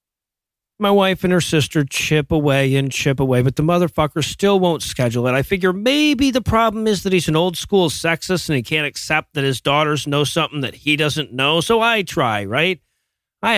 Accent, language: American, English